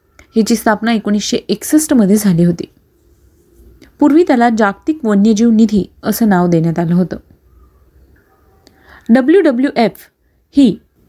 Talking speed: 105 wpm